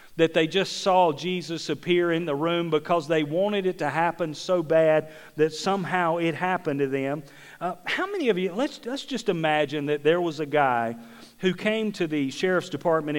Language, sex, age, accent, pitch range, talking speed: English, male, 40-59, American, 130-165 Hz, 195 wpm